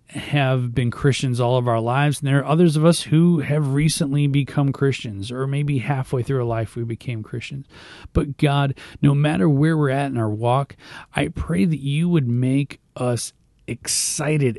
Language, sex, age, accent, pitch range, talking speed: English, male, 30-49, American, 120-150 Hz, 185 wpm